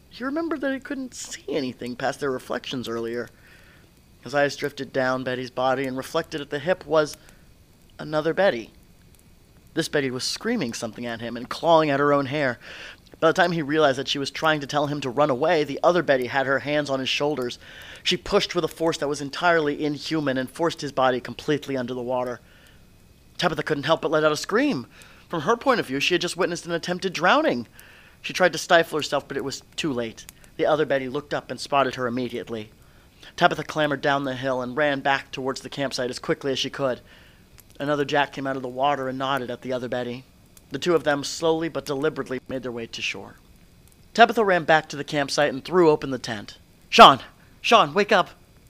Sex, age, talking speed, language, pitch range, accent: male, 30-49, 215 wpm, English, 125-155 Hz, American